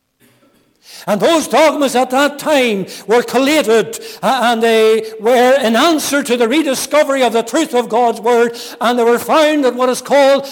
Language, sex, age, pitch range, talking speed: English, male, 60-79, 210-275 Hz, 170 wpm